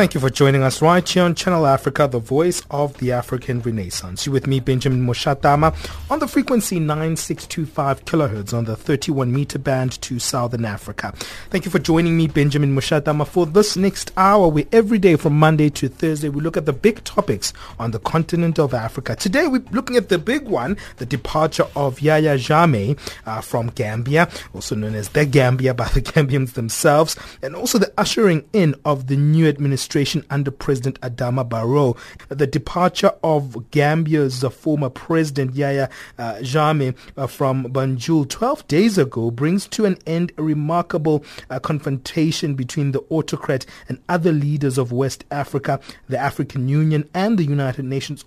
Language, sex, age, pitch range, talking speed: English, male, 30-49, 130-160 Hz, 170 wpm